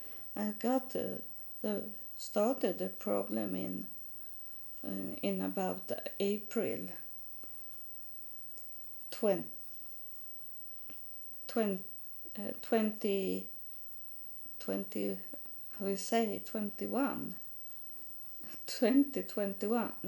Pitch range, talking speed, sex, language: 185-235 Hz, 65 wpm, female, English